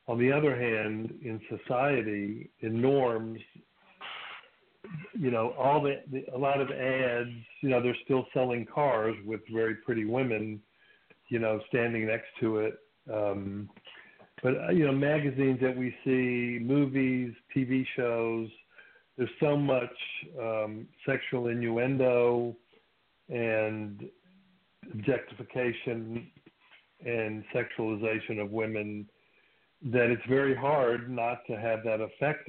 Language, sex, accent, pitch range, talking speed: English, male, American, 110-130 Hz, 120 wpm